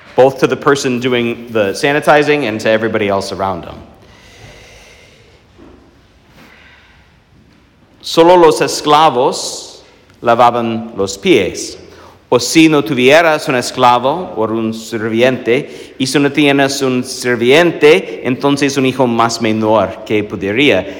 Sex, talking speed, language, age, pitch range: male, 115 wpm, English, 50-69, 120-155 Hz